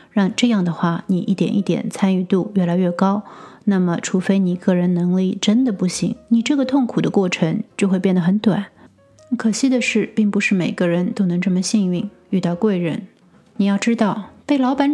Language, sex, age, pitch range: Chinese, female, 30-49, 185-230 Hz